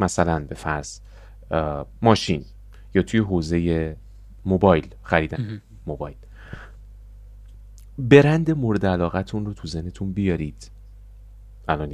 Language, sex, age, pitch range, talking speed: Persian, male, 30-49, 80-100 Hz, 90 wpm